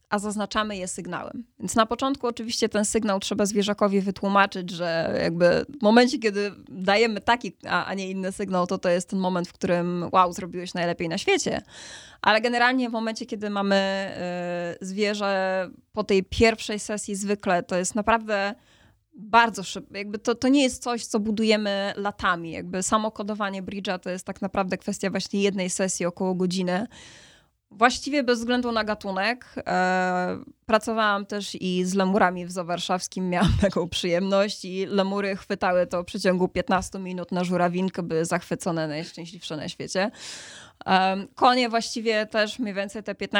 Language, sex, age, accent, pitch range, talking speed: Polish, female, 20-39, native, 185-215 Hz, 160 wpm